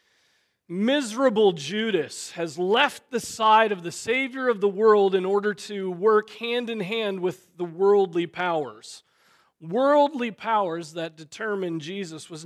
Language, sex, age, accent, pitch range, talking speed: English, male, 40-59, American, 150-215 Hz, 140 wpm